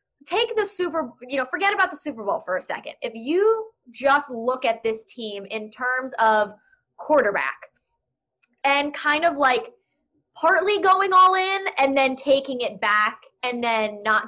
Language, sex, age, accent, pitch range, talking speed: English, female, 10-29, American, 250-370 Hz, 170 wpm